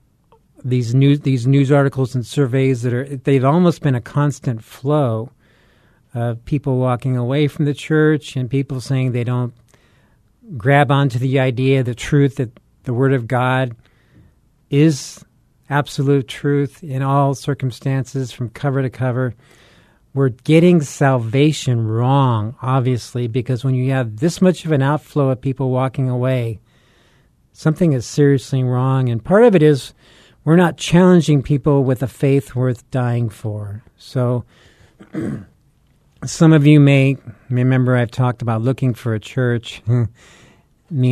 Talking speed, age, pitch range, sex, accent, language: 145 wpm, 40-59, 120-140 Hz, male, American, English